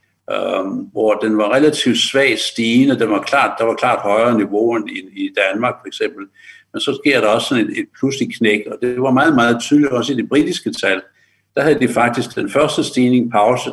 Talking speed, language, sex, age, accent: 215 wpm, Danish, male, 60-79, native